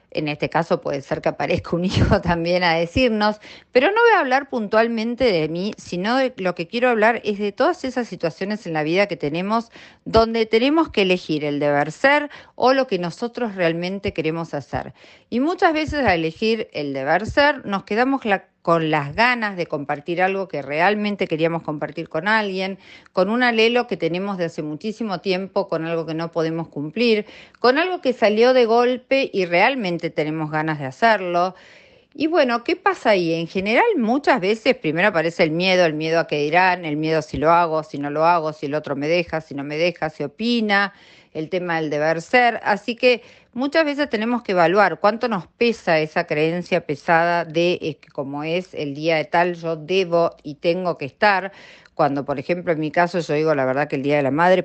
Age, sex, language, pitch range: 40-59, female, Spanish, 155-215 Hz